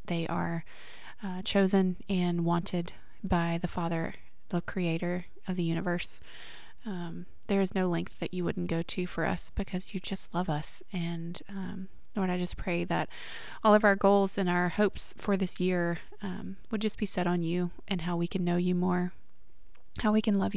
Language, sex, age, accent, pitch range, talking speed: English, female, 20-39, American, 175-195 Hz, 195 wpm